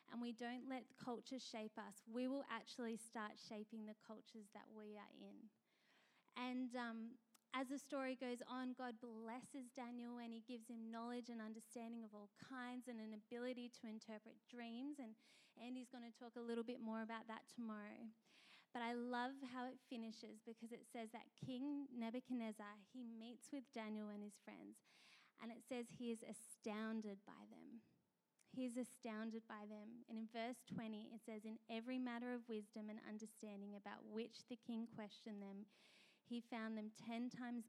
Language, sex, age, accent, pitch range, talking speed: English, female, 20-39, Australian, 220-245 Hz, 175 wpm